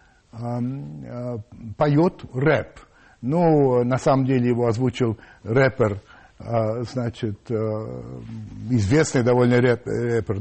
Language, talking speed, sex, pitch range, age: Russian, 80 wpm, male, 120-160 Hz, 60-79